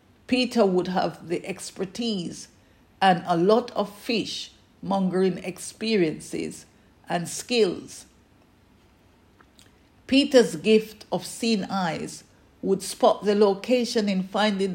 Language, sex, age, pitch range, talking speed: English, female, 50-69, 175-215 Hz, 100 wpm